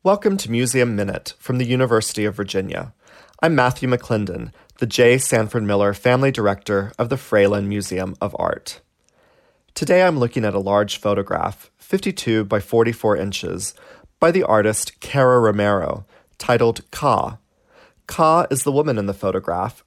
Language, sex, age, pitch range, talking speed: English, male, 30-49, 100-130 Hz, 150 wpm